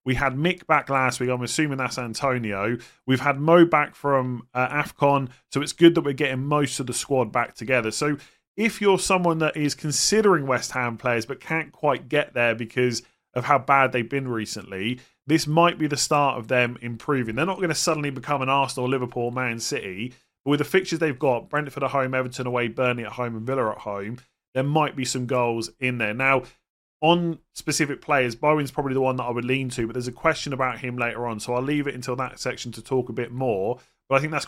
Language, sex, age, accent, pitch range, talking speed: English, male, 30-49, British, 120-150 Hz, 230 wpm